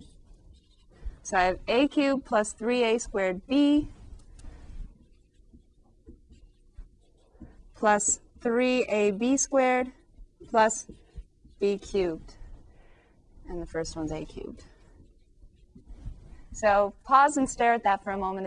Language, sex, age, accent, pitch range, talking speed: English, female, 30-49, American, 180-240 Hz, 95 wpm